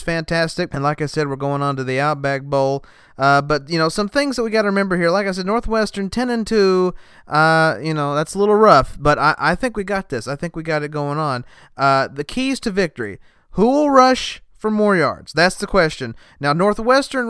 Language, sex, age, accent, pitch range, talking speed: English, male, 30-49, American, 145-195 Hz, 235 wpm